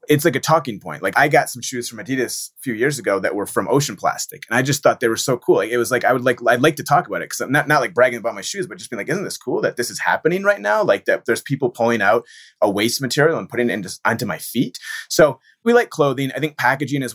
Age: 30-49